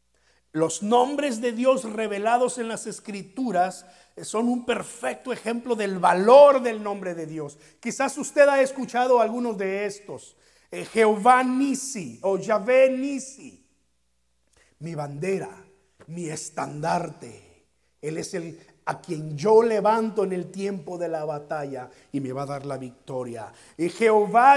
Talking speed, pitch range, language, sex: 135 wpm, 165-235 Hz, Spanish, male